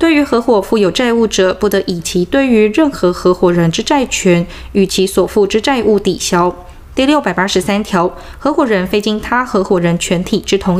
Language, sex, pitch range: Chinese, female, 185-255 Hz